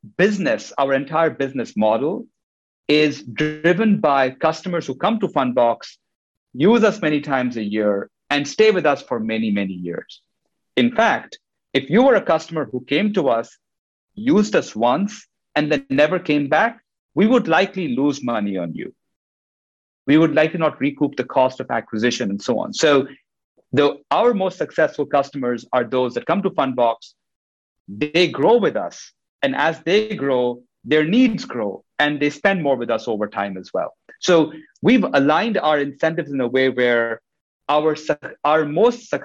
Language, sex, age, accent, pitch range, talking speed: English, male, 50-69, Indian, 125-175 Hz, 170 wpm